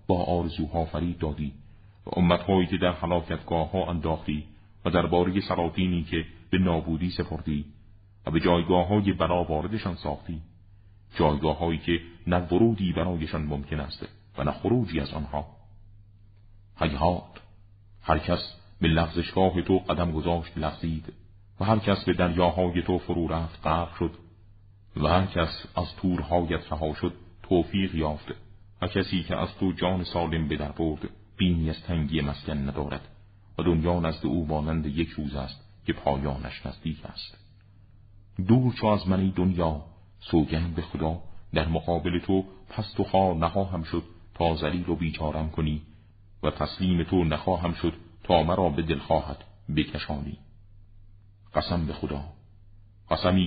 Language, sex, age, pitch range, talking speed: Persian, male, 40-59, 80-95 Hz, 140 wpm